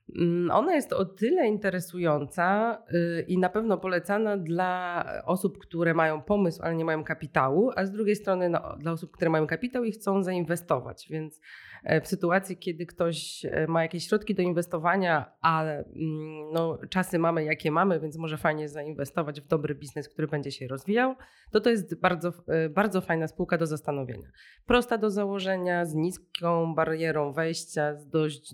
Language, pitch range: Polish, 155-185 Hz